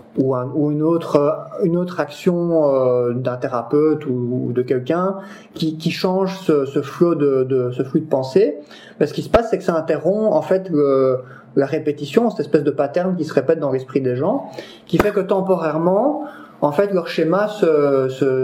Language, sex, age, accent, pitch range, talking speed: French, male, 30-49, French, 140-180 Hz, 200 wpm